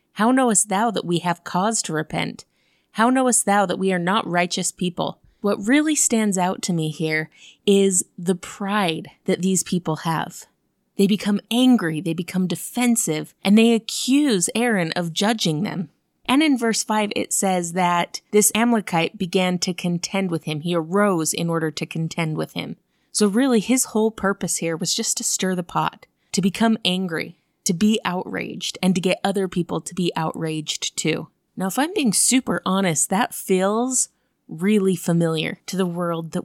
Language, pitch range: English, 170-215 Hz